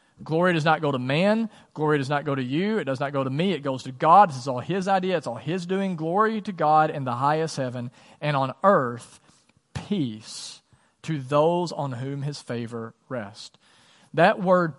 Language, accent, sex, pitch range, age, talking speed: English, American, male, 135-175 Hz, 40-59, 205 wpm